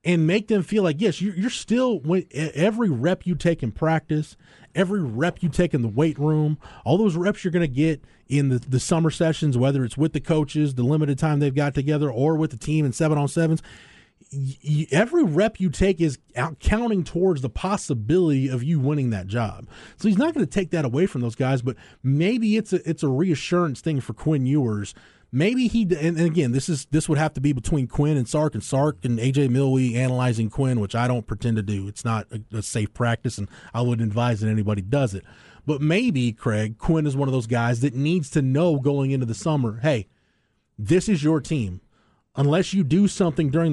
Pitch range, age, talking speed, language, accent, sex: 130-175 Hz, 30-49, 215 wpm, English, American, male